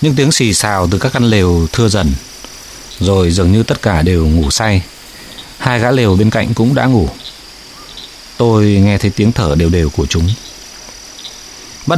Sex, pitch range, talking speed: male, 90-120 Hz, 180 wpm